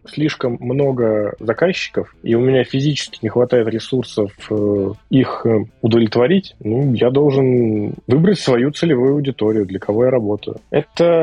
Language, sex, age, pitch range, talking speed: Russian, male, 20-39, 110-130 Hz, 130 wpm